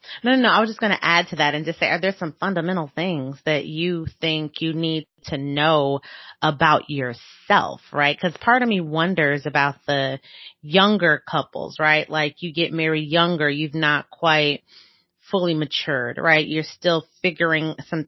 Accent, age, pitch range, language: American, 30-49, 150-175 Hz, English